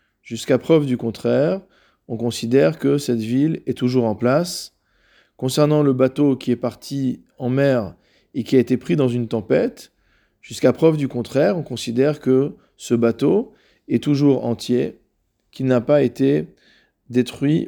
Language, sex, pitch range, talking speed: French, male, 120-145 Hz, 155 wpm